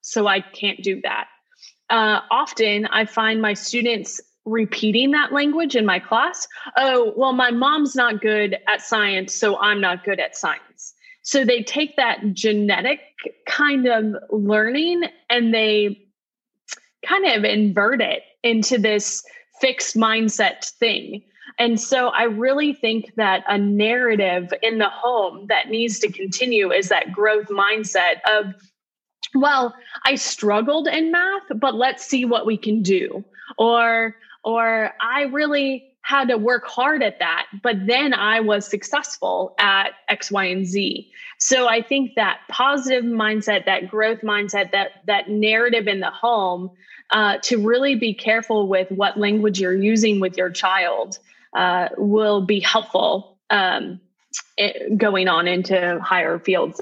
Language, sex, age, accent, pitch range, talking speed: English, female, 20-39, American, 205-255 Hz, 150 wpm